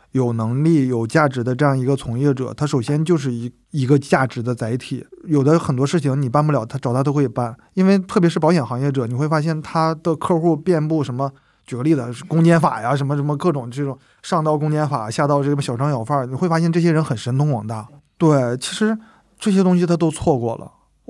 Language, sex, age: Chinese, male, 20-39